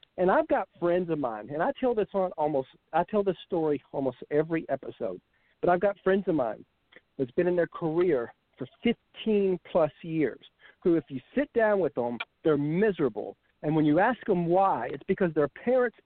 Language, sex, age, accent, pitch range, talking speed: English, male, 50-69, American, 165-210 Hz, 195 wpm